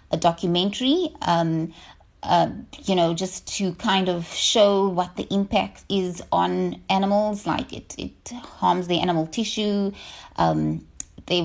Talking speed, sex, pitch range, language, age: 135 wpm, female, 160-195 Hz, English, 30-49